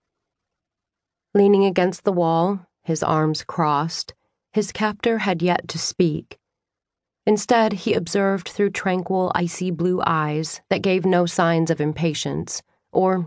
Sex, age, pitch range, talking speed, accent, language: female, 40-59, 155-185 Hz, 125 wpm, American, English